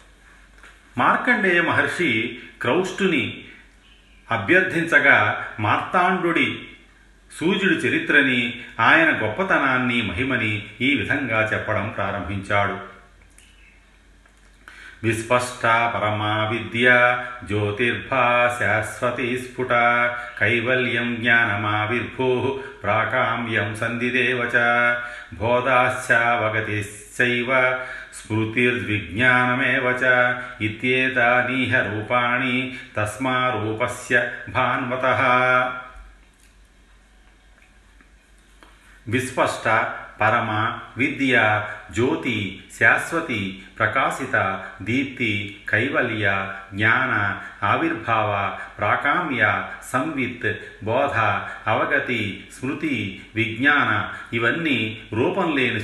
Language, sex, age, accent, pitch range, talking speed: Telugu, male, 40-59, native, 105-125 Hz, 45 wpm